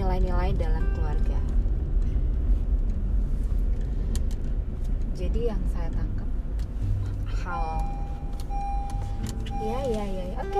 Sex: female